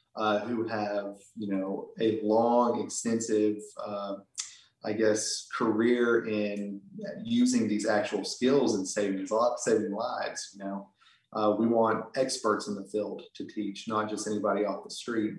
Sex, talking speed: male, 150 wpm